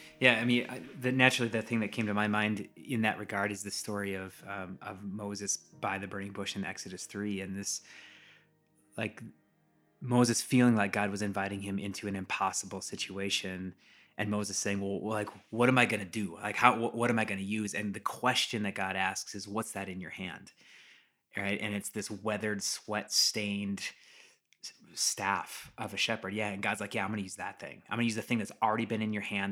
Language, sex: English, male